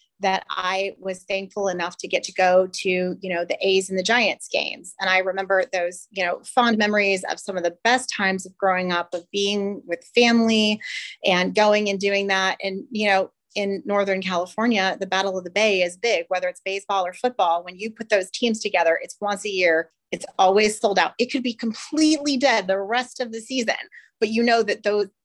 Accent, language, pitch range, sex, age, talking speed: American, English, 175-205 Hz, female, 30-49, 215 wpm